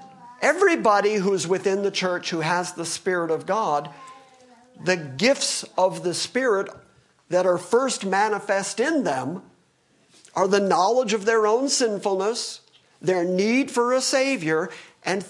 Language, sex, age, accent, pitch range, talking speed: English, male, 50-69, American, 170-230 Hz, 140 wpm